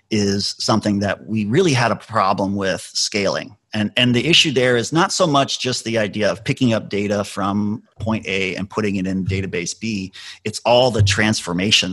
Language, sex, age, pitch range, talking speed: English, male, 30-49, 100-120 Hz, 195 wpm